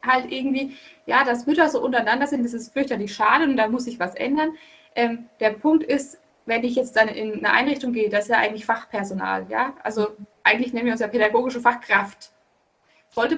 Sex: female